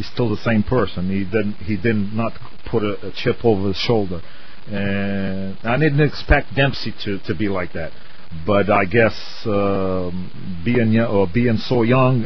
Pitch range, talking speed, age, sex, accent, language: 105-145 Hz, 175 wpm, 40-59, male, American, English